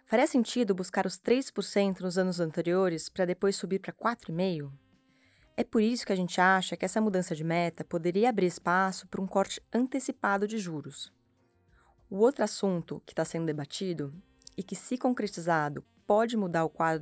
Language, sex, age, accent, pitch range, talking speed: Portuguese, female, 20-39, Brazilian, 175-220 Hz, 175 wpm